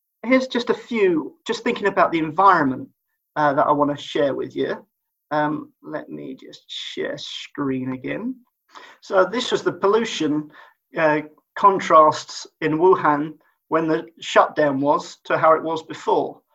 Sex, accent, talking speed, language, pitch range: male, British, 150 wpm, English, 150-235 Hz